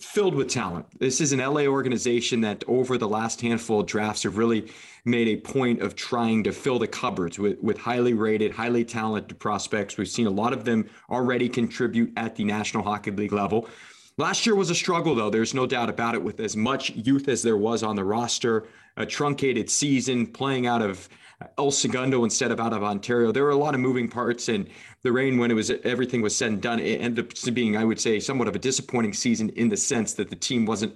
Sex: male